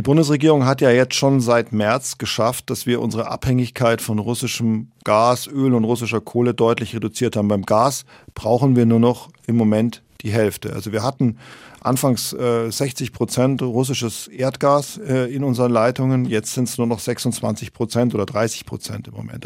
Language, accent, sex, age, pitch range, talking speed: German, German, male, 40-59, 110-130 Hz, 180 wpm